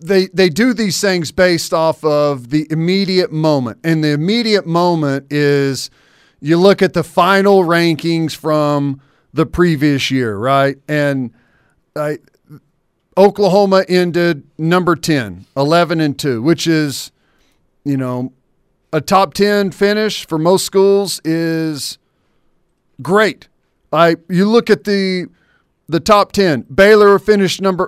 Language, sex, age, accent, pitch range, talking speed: English, male, 40-59, American, 150-195 Hz, 125 wpm